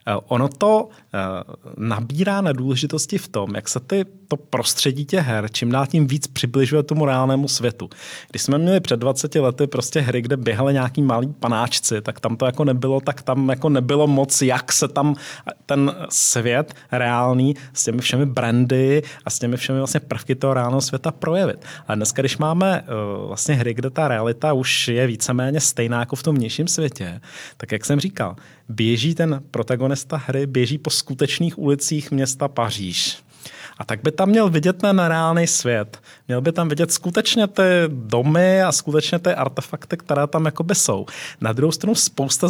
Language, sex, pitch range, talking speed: Czech, male, 125-160 Hz, 180 wpm